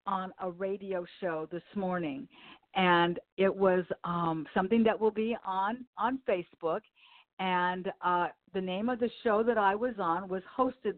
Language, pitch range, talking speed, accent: English, 175-235 Hz, 165 wpm, American